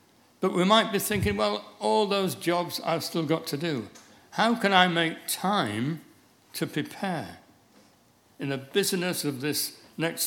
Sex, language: male, English